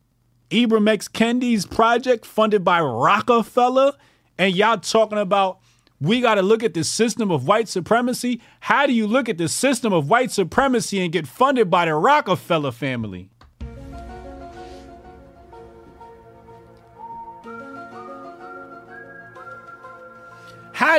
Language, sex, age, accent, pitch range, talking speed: English, male, 40-59, American, 120-205 Hz, 110 wpm